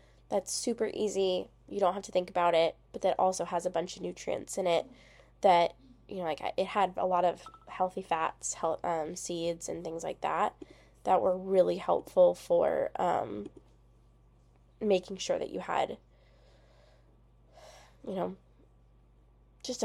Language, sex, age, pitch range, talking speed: English, female, 10-29, 165-200 Hz, 160 wpm